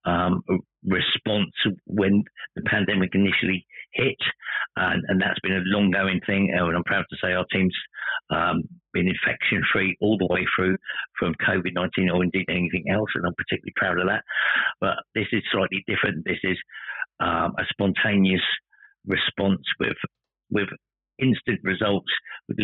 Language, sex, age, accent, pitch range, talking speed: English, male, 50-69, British, 90-100 Hz, 155 wpm